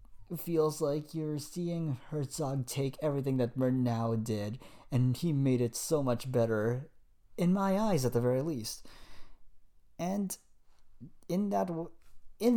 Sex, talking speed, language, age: male, 125 wpm, English, 30-49